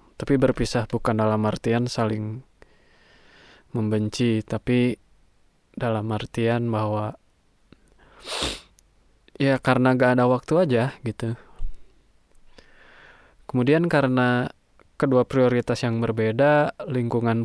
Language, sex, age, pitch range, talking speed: Indonesian, male, 20-39, 110-125 Hz, 85 wpm